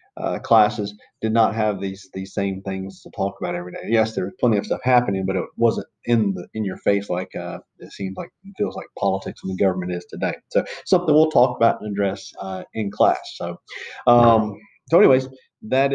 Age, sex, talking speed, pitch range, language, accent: 40-59, male, 220 wpm, 100-120 Hz, English, American